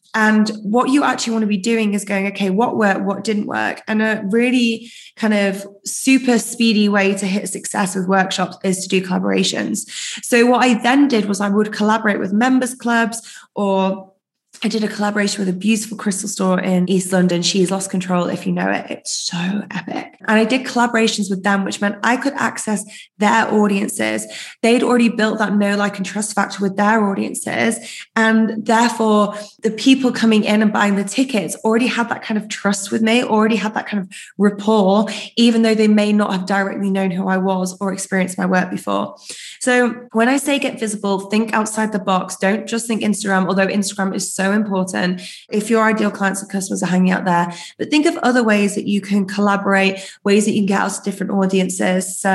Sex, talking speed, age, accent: female, 205 wpm, 20-39, British